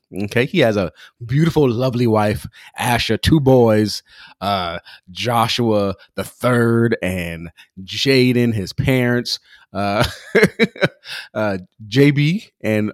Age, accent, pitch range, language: 30-49, American, 105-135 Hz, English